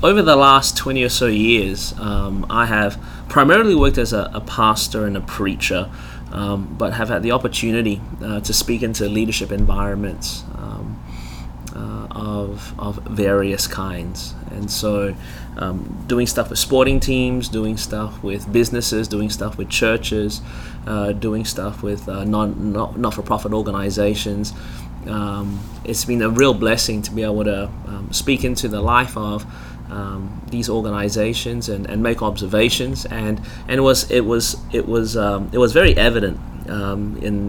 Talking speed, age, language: 160 wpm, 20-39, English